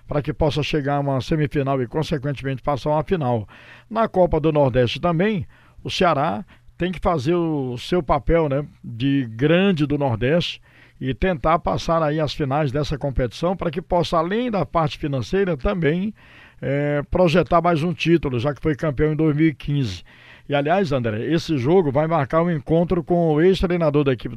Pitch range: 135-170 Hz